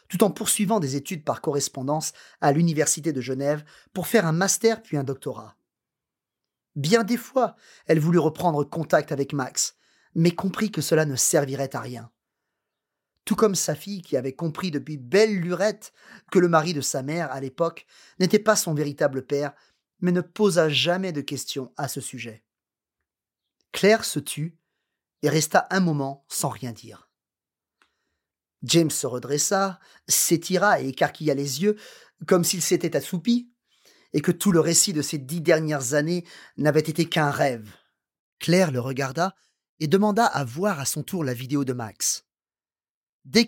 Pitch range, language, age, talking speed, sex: 140-185 Hz, English, 30-49, 165 wpm, male